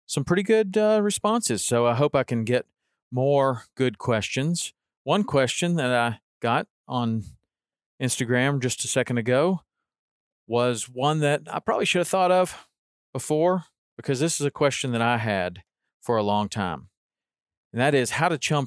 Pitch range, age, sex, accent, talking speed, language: 115-140 Hz, 40-59, male, American, 170 wpm, English